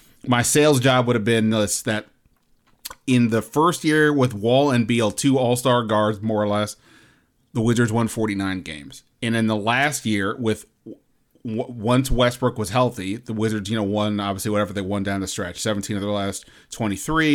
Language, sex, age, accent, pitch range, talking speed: English, male, 30-49, American, 105-130 Hz, 185 wpm